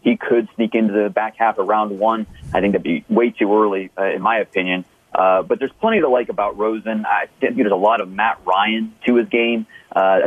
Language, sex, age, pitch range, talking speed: English, male, 30-49, 105-120 Hz, 240 wpm